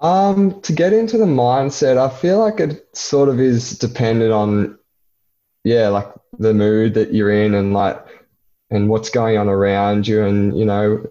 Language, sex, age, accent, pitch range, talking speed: English, male, 20-39, Australian, 100-115 Hz, 180 wpm